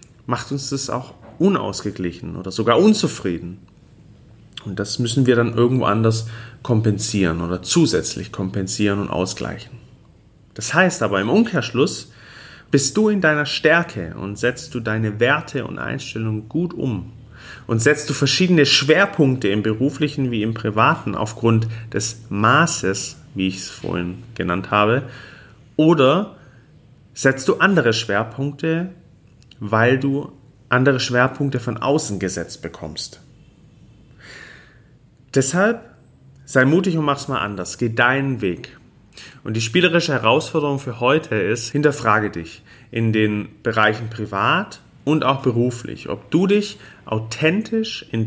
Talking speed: 130 wpm